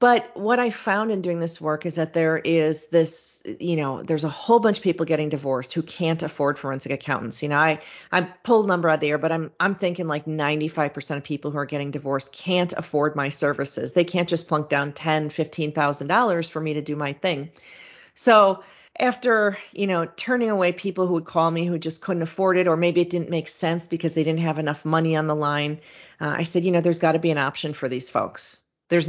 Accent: American